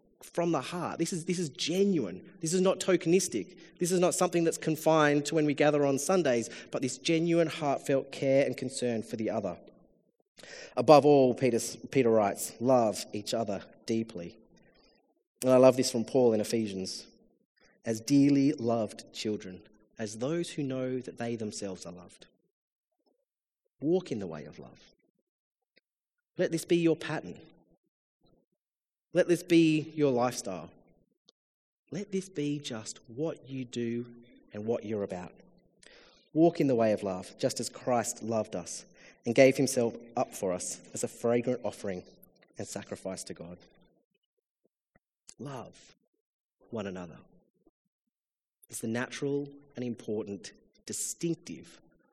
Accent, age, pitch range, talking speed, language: Australian, 30-49, 115-165 Hz, 145 wpm, English